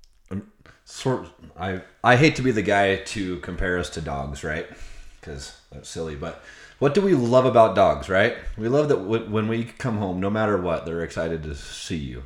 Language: English